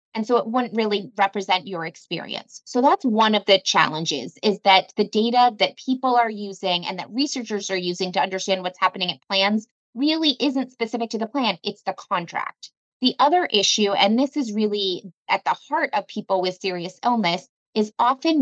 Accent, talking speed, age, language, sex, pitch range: American, 190 wpm, 20-39, English, female, 185-230 Hz